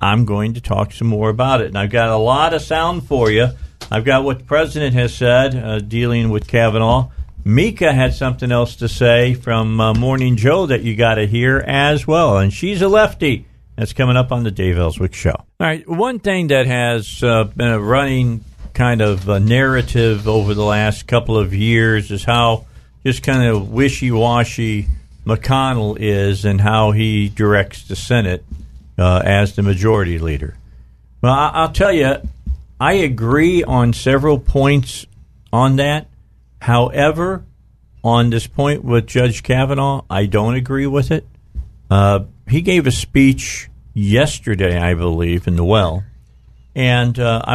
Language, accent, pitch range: English, American, 100-130 Hz